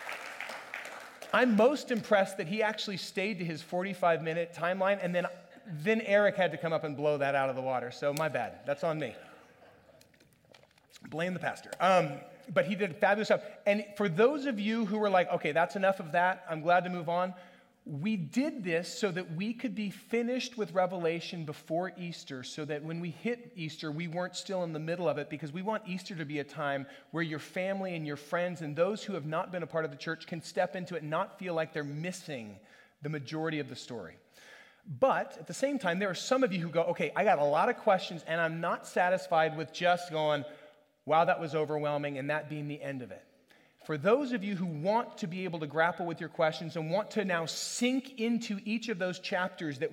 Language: English